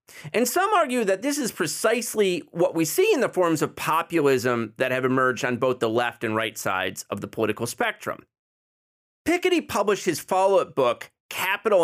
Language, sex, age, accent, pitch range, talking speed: English, male, 30-49, American, 155-250 Hz, 175 wpm